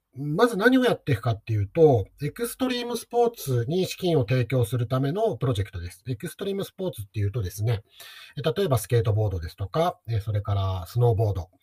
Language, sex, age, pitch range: Japanese, male, 40-59, 105-160 Hz